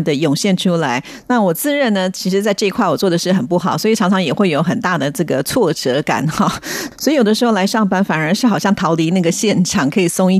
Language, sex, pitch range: Japanese, female, 170-210 Hz